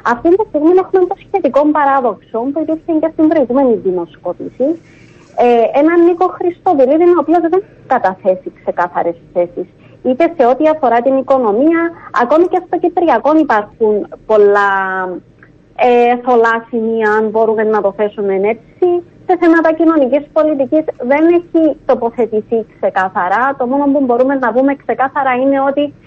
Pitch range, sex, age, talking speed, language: 220-320 Hz, female, 20-39, 140 wpm, Greek